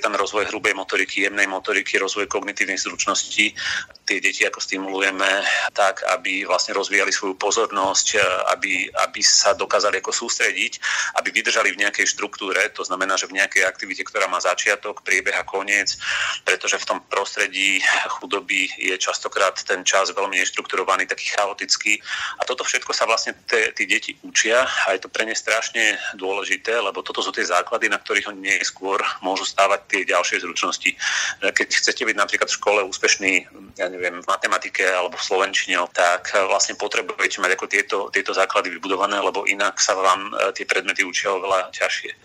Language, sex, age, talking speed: Slovak, male, 30-49, 165 wpm